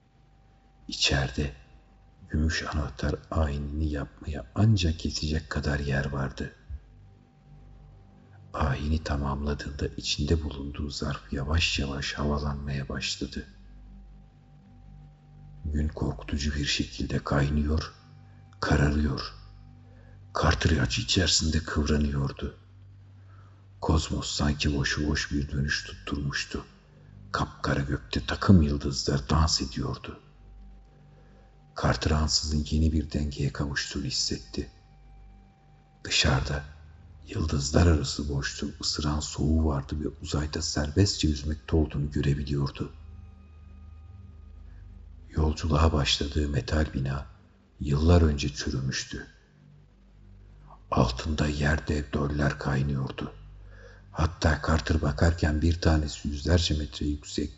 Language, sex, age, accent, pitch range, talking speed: Turkish, male, 60-79, native, 75-85 Hz, 85 wpm